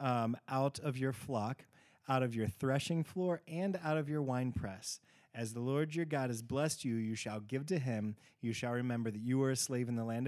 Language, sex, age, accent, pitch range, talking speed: English, male, 20-39, American, 115-140 Hz, 235 wpm